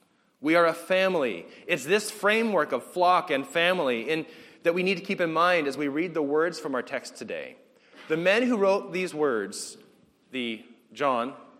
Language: English